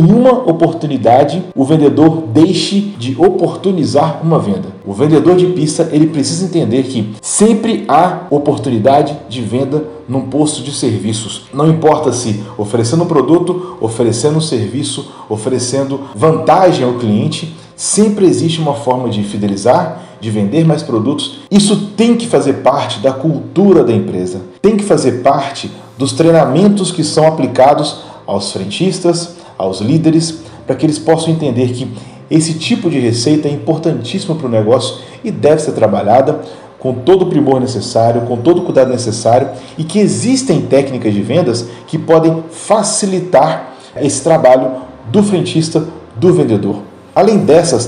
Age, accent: 40-59, Brazilian